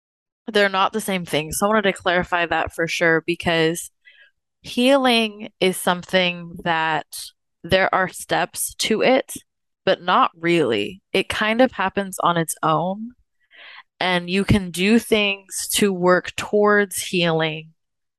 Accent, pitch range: American, 170-200 Hz